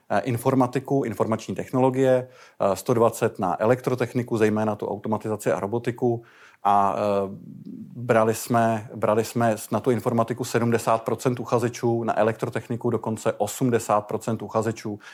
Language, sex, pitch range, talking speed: Czech, male, 110-125 Hz, 105 wpm